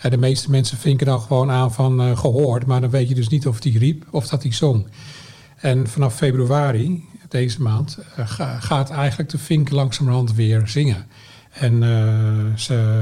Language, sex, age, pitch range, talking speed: Dutch, male, 50-69, 120-145 Hz, 180 wpm